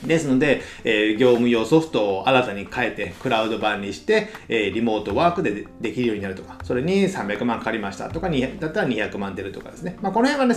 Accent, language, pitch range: native, Japanese, 115-185 Hz